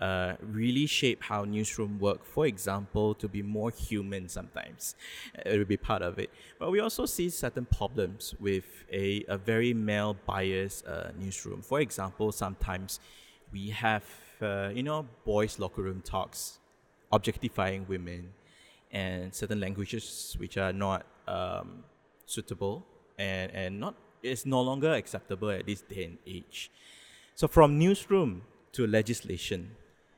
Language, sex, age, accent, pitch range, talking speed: English, male, 20-39, Malaysian, 95-115 Hz, 140 wpm